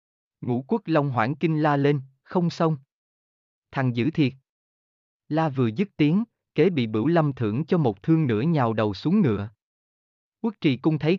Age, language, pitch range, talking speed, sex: 20-39, Vietnamese, 110-165 Hz, 175 wpm, male